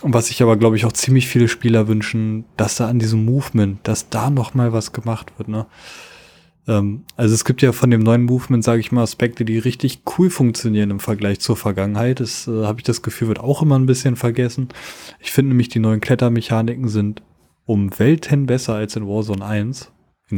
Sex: male